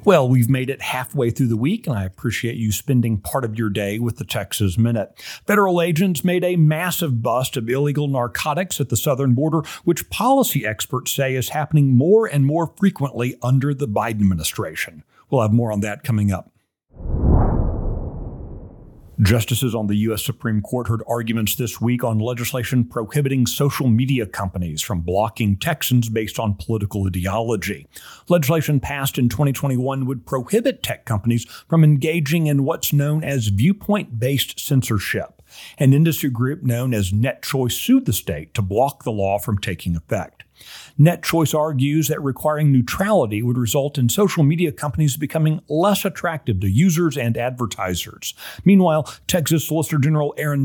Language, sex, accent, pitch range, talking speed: English, male, American, 110-150 Hz, 160 wpm